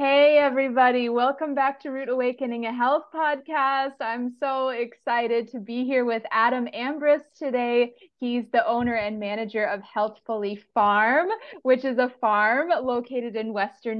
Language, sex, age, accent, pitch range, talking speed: English, female, 20-39, American, 220-260 Hz, 150 wpm